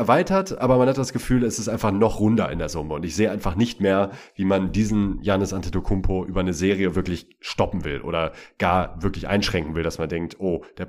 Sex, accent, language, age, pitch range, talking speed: male, German, German, 30-49, 95-120 Hz, 225 wpm